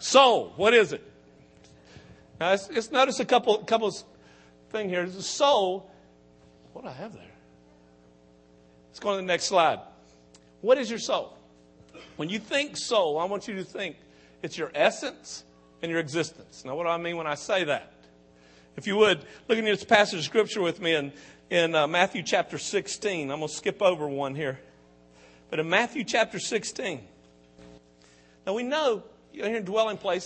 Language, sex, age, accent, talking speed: English, male, 50-69, American, 180 wpm